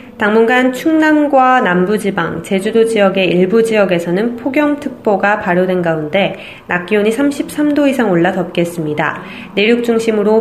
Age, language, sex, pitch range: 20-39, Korean, female, 180-235 Hz